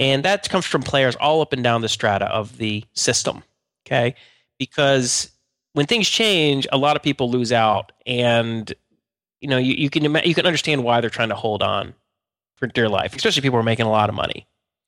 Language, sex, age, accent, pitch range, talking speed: English, male, 30-49, American, 115-150 Hz, 210 wpm